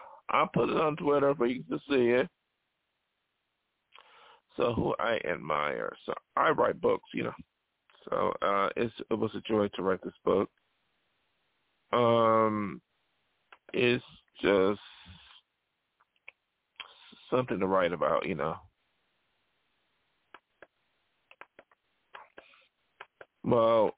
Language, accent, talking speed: English, American, 105 wpm